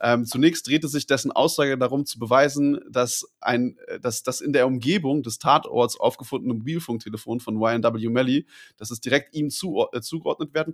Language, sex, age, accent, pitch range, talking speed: German, male, 20-39, German, 120-145 Hz, 155 wpm